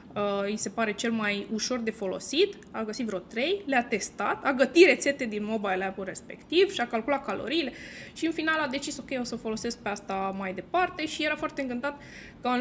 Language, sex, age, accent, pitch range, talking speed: Romanian, female, 20-39, native, 225-300 Hz, 215 wpm